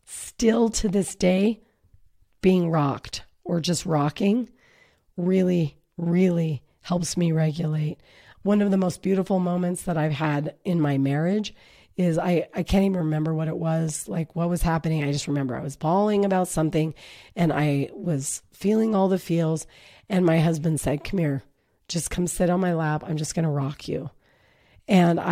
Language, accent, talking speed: English, American, 175 wpm